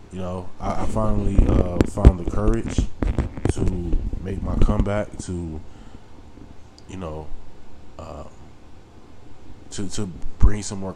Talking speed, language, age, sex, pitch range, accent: 120 wpm, English, 20-39, male, 85-105 Hz, American